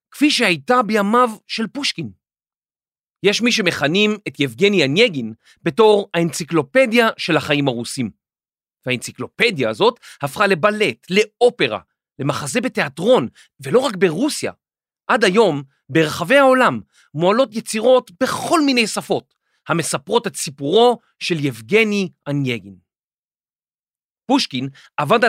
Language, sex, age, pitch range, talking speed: Hebrew, male, 40-59, 150-235 Hz, 100 wpm